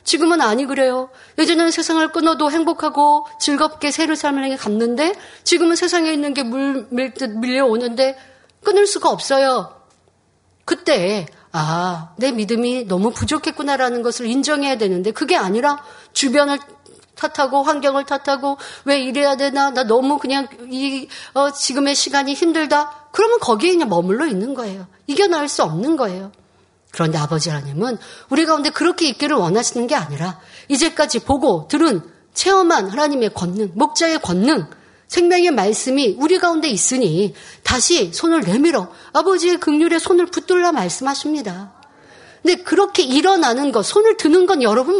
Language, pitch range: Korean, 235-325 Hz